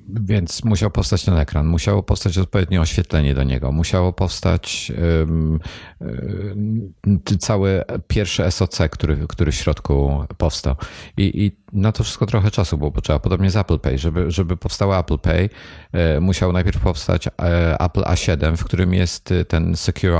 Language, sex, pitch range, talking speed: Polish, male, 80-100 Hz, 165 wpm